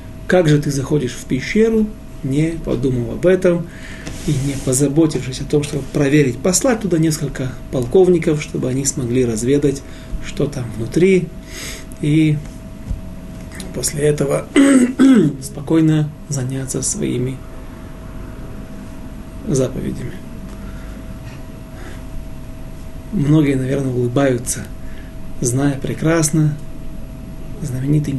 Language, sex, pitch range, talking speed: Russian, male, 130-160 Hz, 85 wpm